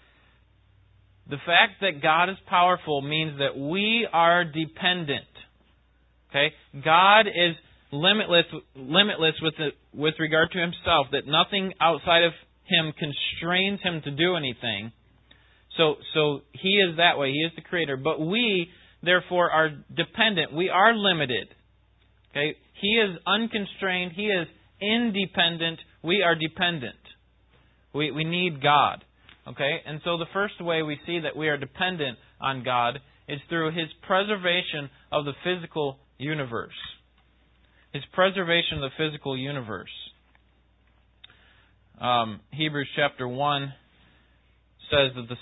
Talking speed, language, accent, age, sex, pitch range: 130 wpm, English, American, 30-49, male, 125-170 Hz